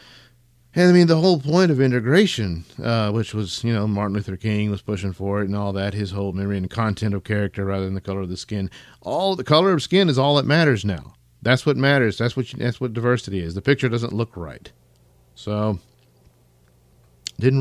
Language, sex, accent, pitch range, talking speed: English, male, American, 95-130 Hz, 215 wpm